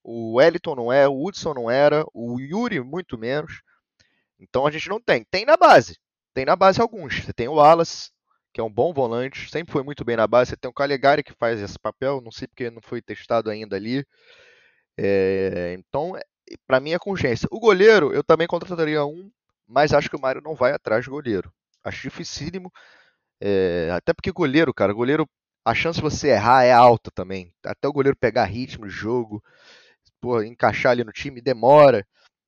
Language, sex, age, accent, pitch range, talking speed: Portuguese, male, 20-39, Brazilian, 120-160 Hz, 200 wpm